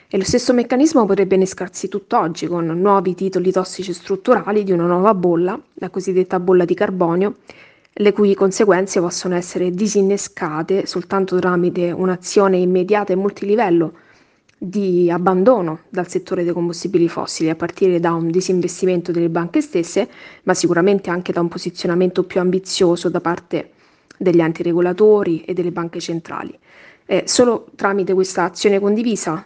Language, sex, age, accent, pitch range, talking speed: Italian, female, 30-49, native, 175-195 Hz, 145 wpm